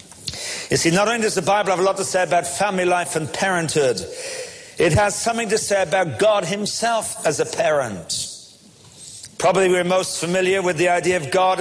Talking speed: 190 wpm